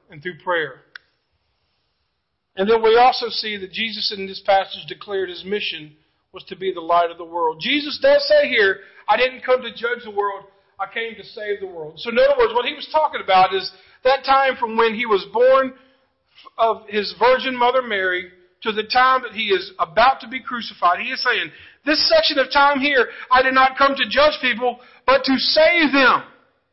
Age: 40-59